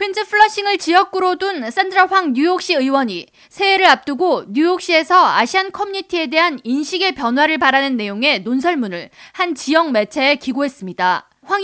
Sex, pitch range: female, 255-355 Hz